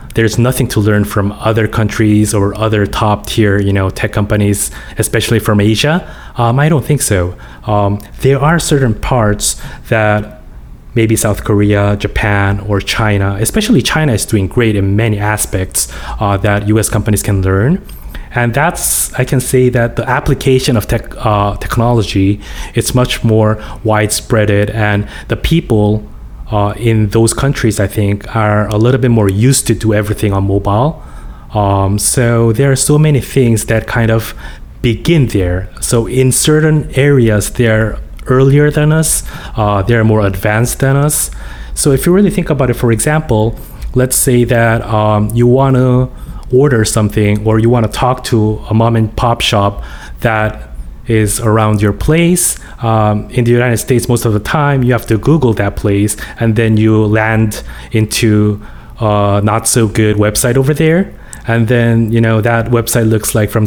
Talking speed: 170 wpm